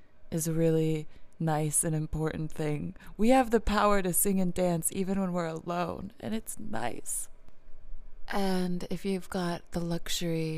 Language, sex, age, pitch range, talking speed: English, female, 20-39, 165-190 Hz, 160 wpm